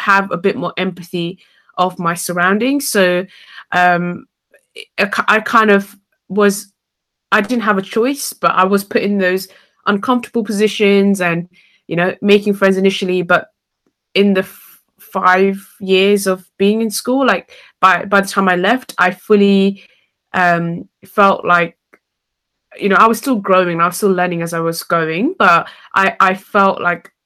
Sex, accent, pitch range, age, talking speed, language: female, British, 180-210 Hz, 20-39, 160 wpm, English